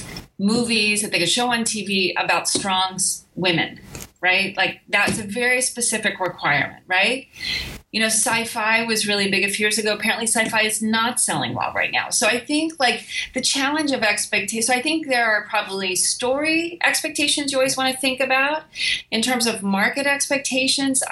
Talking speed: 175 wpm